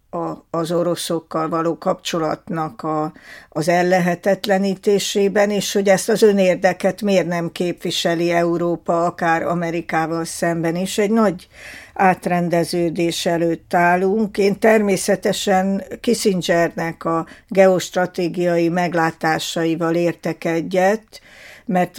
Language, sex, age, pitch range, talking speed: Hungarian, female, 60-79, 170-195 Hz, 90 wpm